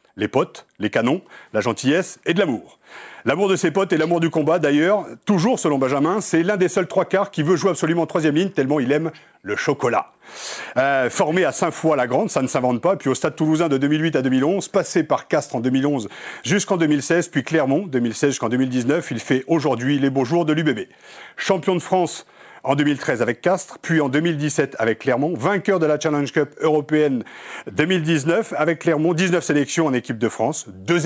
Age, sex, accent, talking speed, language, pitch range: 40-59, male, French, 205 wpm, French, 135-175 Hz